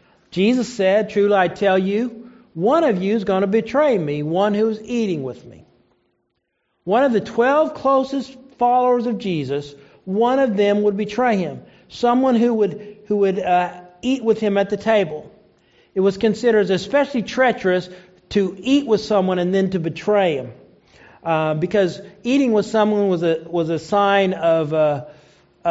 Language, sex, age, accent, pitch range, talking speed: English, male, 50-69, American, 170-225 Hz, 170 wpm